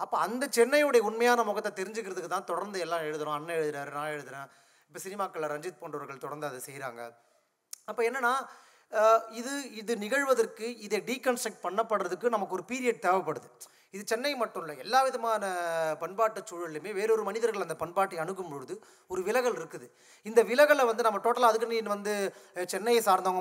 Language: Tamil